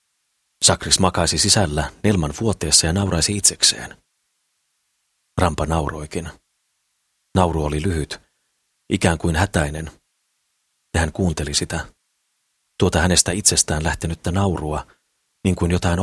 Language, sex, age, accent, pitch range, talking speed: Finnish, male, 40-59, native, 80-95 Hz, 105 wpm